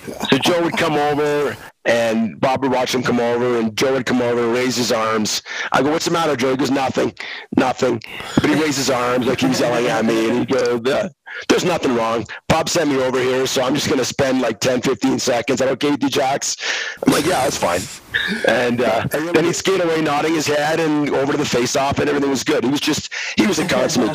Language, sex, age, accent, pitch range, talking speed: English, male, 40-59, American, 120-150 Hz, 240 wpm